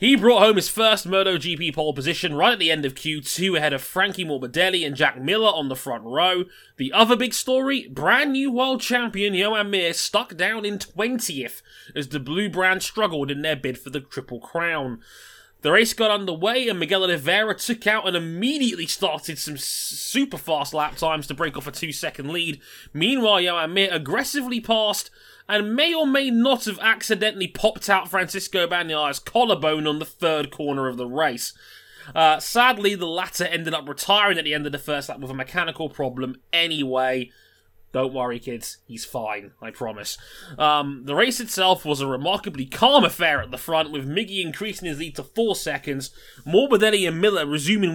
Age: 20-39